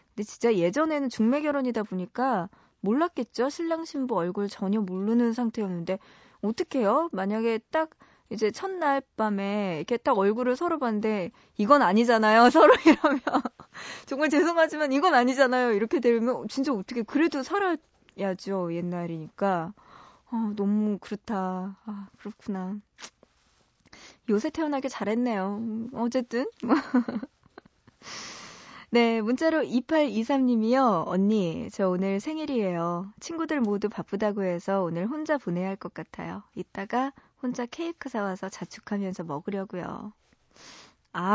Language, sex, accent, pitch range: Korean, female, native, 195-265 Hz